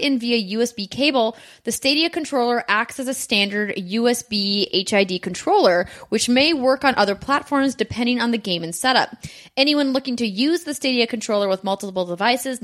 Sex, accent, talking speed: female, American, 170 wpm